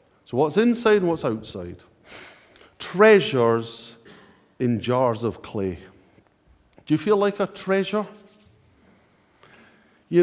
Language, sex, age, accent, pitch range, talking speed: English, male, 50-69, British, 105-175 Hz, 105 wpm